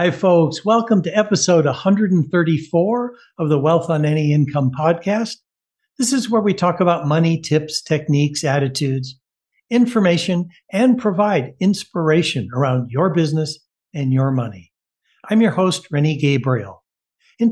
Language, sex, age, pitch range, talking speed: English, male, 60-79, 145-185 Hz, 135 wpm